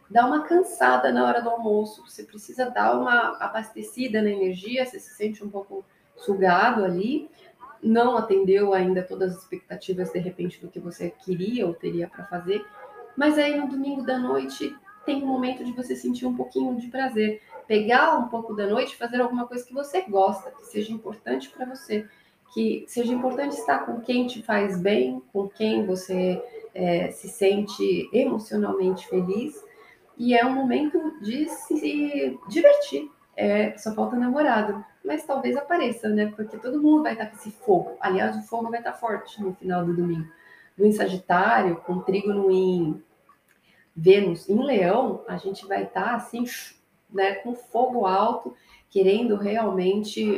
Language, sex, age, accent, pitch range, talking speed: Portuguese, female, 20-39, Brazilian, 185-245 Hz, 165 wpm